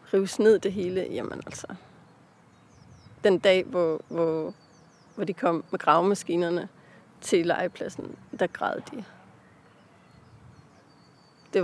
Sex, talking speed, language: female, 110 wpm, Danish